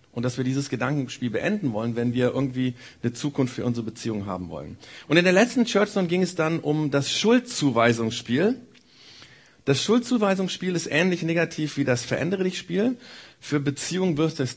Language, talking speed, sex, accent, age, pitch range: German, 175 wpm, male, German, 50-69, 120-165 Hz